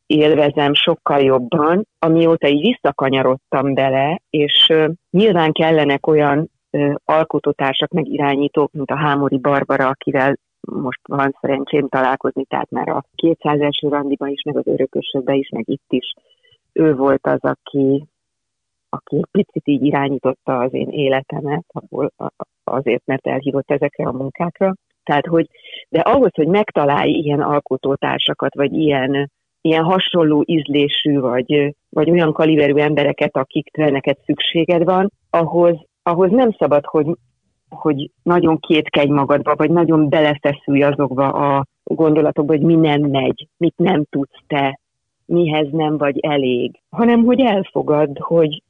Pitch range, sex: 140-170 Hz, female